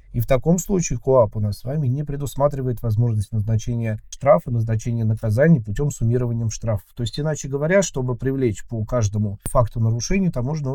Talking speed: 170 wpm